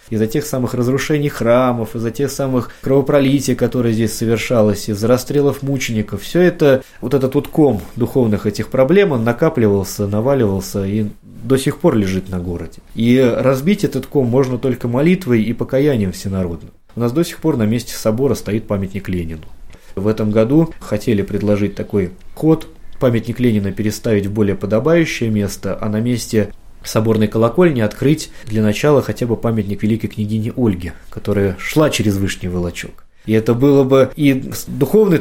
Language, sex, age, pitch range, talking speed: Russian, male, 20-39, 100-130 Hz, 160 wpm